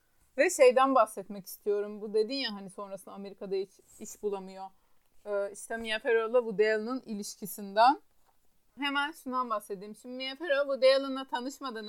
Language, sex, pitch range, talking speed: Turkish, female, 220-270 Hz, 145 wpm